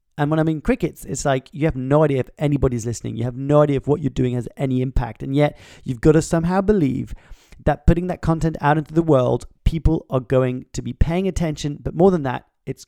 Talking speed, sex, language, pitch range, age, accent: 240 wpm, male, English, 135-170 Hz, 30-49, British